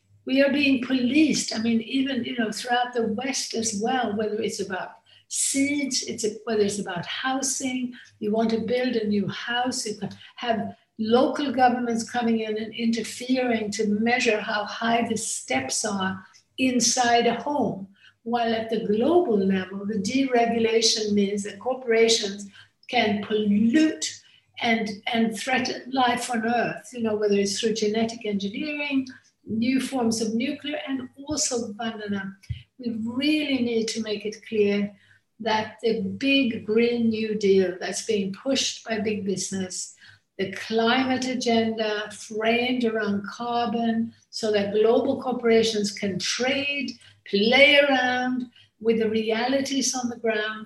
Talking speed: 145 wpm